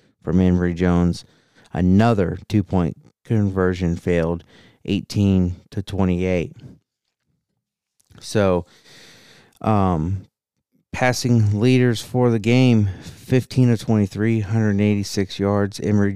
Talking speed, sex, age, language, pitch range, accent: 90 wpm, male, 40-59, English, 95-110 Hz, American